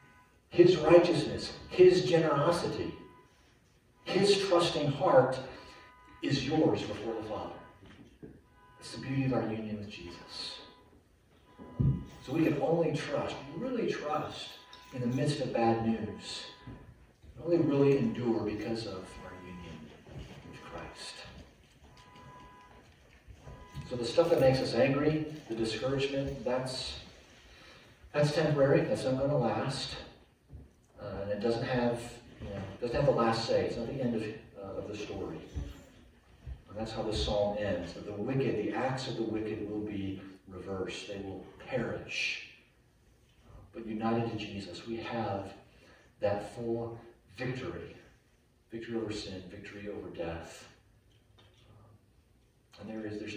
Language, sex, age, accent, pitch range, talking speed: English, male, 40-59, American, 105-130 Hz, 130 wpm